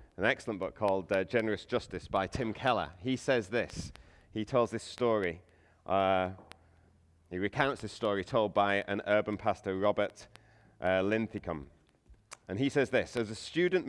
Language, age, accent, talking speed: English, 40-59, British, 160 wpm